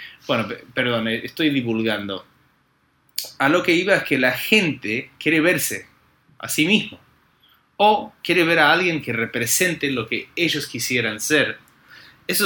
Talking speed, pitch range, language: 145 wpm, 115-150 Hz, Spanish